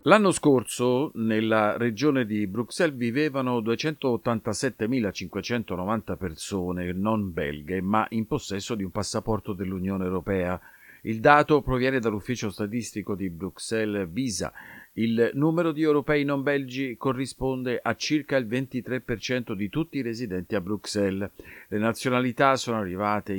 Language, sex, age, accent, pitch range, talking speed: Italian, male, 50-69, native, 95-130 Hz, 125 wpm